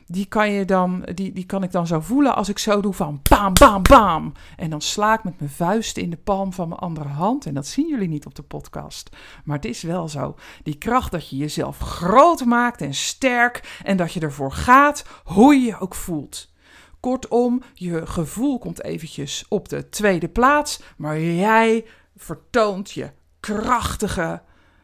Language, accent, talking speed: Dutch, Dutch, 190 wpm